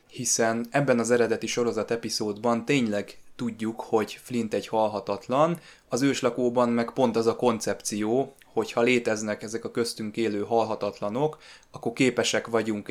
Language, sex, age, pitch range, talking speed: Hungarian, male, 20-39, 105-120 Hz, 140 wpm